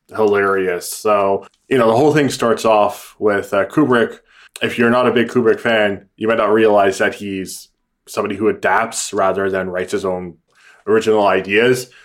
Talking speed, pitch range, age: 175 wpm, 100-120 Hz, 20-39